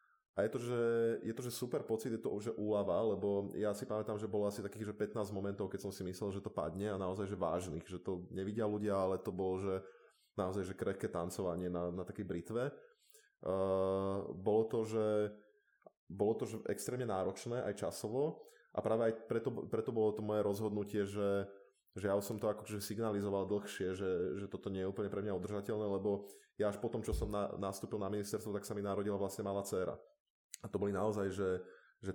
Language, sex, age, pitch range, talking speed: Slovak, male, 20-39, 95-105 Hz, 210 wpm